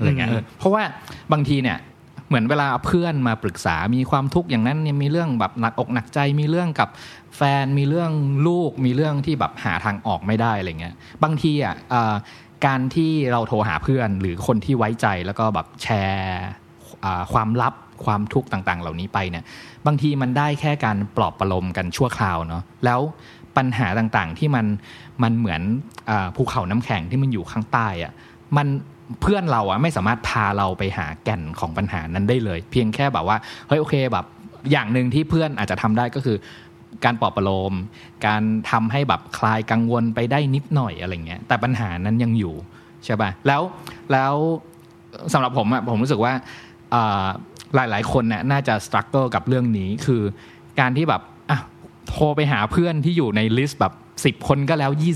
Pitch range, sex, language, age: 105-140 Hz, male, Thai, 20-39